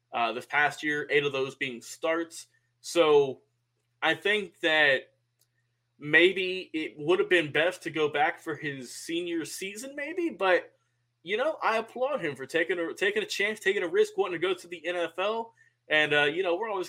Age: 20-39